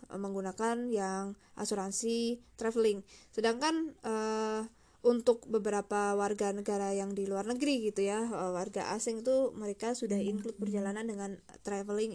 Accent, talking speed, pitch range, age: native, 130 wpm, 200-235 Hz, 20-39